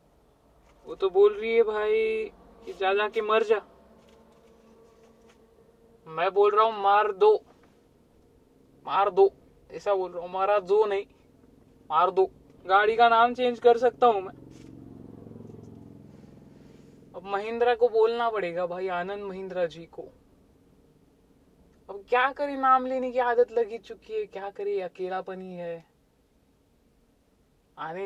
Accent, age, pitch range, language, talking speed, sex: native, 20-39, 180-255 Hz, Marathi, 130 wpm, female